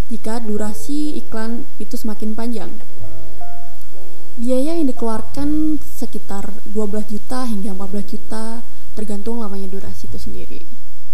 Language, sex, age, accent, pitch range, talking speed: Indonesian, female, 20-39, native, 205-245 Hz, 110 wpm